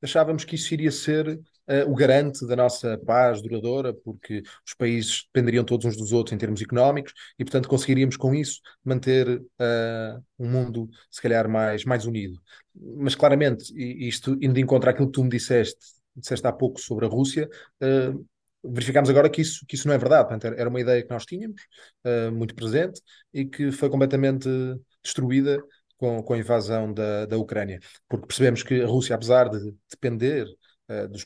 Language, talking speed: Portuguese, 180 wpm